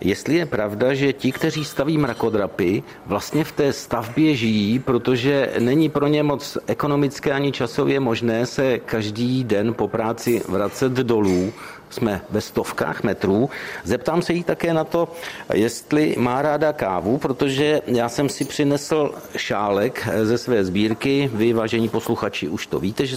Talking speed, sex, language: 155 wpm, male, Czech